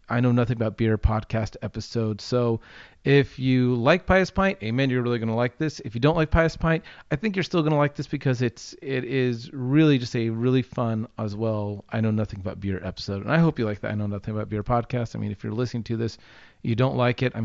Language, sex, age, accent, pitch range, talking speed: English, male, 30-49, American, 110-145 Hz, 260 wpm